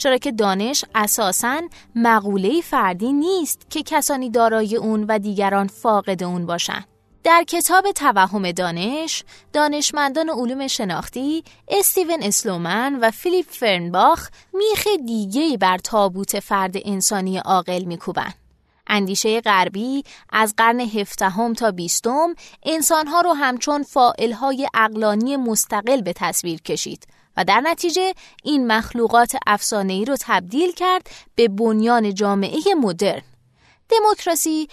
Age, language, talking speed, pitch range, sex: 20-39, Persian, 115 wpm, 200-295 Hz, female